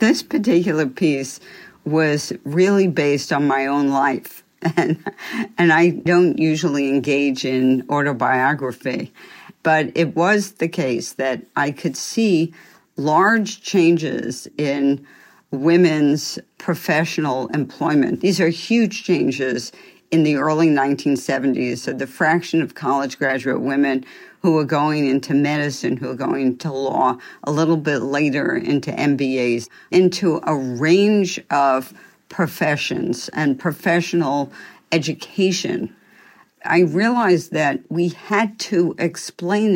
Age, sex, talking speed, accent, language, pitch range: 50-69, female, 120 wpm, American, English, 140-175 Hz